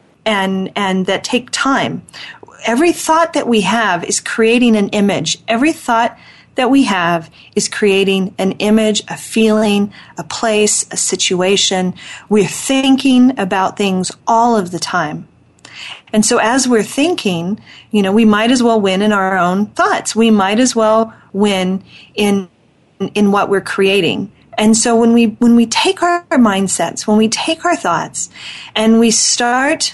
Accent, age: American, 40-59